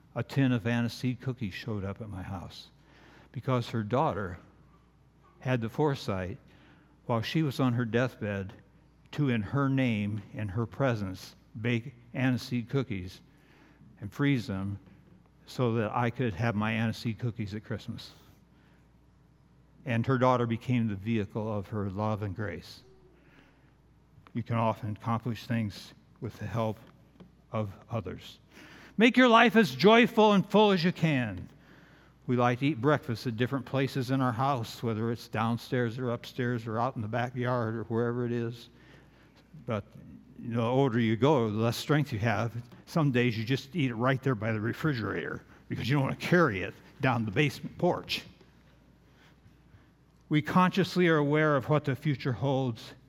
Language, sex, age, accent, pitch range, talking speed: English, male, 60-79, American, 115-145 Hz, 160 wpm